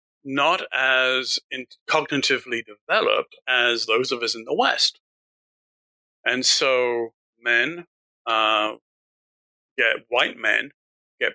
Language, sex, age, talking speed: English, male, 40-59, 105 wpm